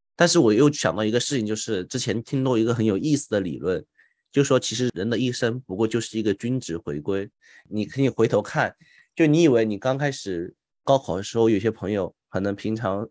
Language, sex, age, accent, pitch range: Chinese, male, 20-39, native, 100-120 Hz